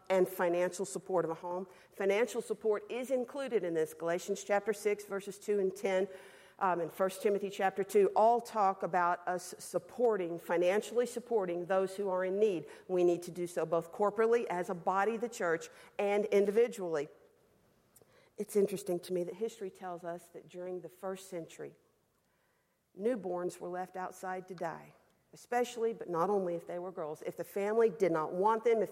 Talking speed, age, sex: 180 wpm, 50-69, female